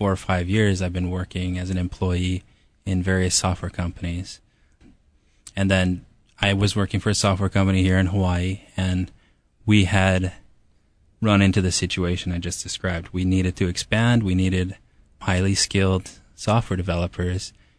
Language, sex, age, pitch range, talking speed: English, male, 20-39, 90-100 Hz, 155 wpm